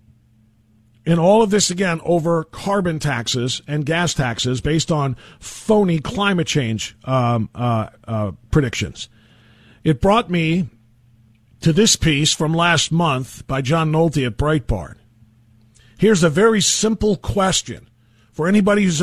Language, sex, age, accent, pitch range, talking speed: English, male, 50-69, American, 120-180 Hz, 130 wpm